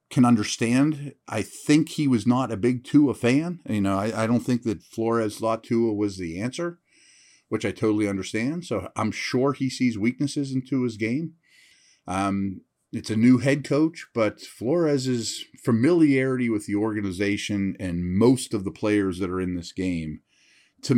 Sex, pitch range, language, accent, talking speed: male, 105-140 Hz, English, American, 170 wpm